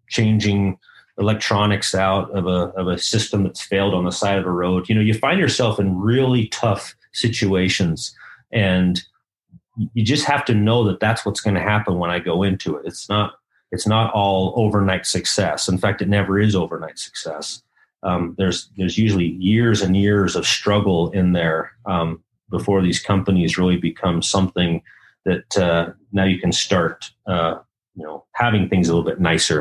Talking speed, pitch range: 180 wpm, 90-105 Hz